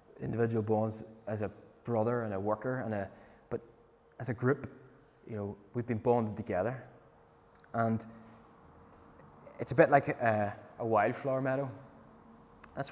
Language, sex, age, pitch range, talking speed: English, male, 20-39, 105-125 Hz, 140 wpm